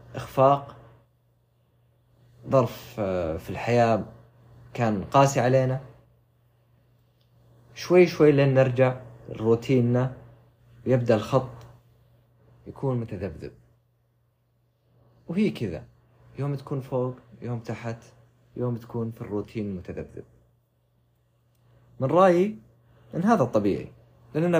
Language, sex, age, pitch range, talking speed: Arabic, male, 30-49, 115-130 Hz, 85 wpm